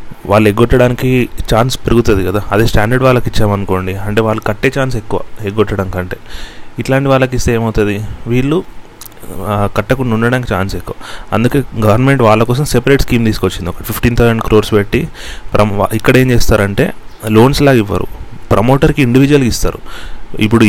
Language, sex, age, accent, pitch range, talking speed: Telugu, male, 30-49, native, 105-130 Hz, 140 wpm